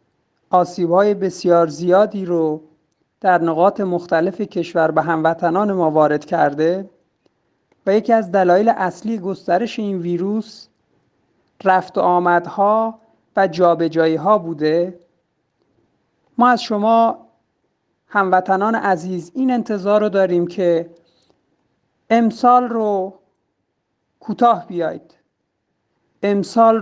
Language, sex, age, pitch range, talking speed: Persian, male, 50-69, 180-220 Hz, 95 wpm